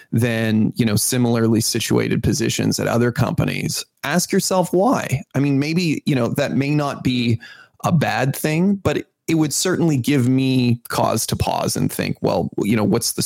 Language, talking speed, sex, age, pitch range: English, 180 wpm, male, 30-49, 115-145 Hz